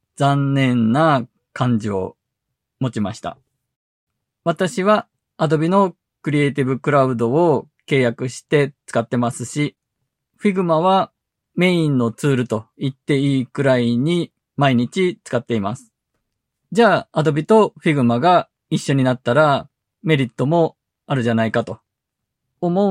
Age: 20-39